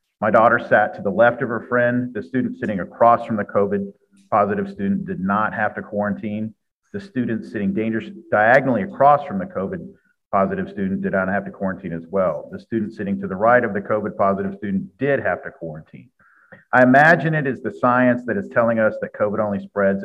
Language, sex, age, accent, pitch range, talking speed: English, male, 50-69, American, 105-135 Hz, 205 wpm